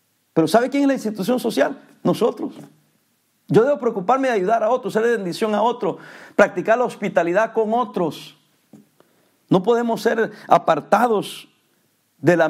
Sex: male